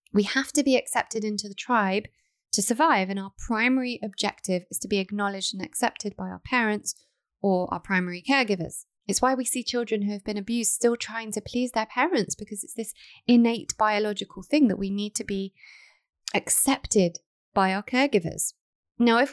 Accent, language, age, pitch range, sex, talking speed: British, English, 30-49, 205-250 Hz, female, 185 wpm